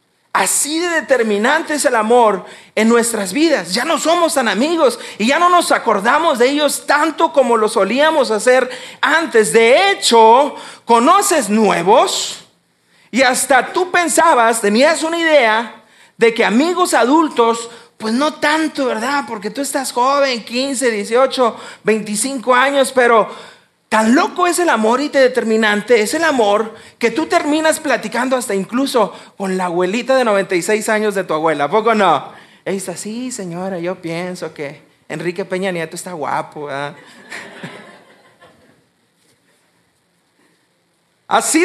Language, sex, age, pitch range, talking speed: English, male, 40-59, 215-295 Hz, 140 wpm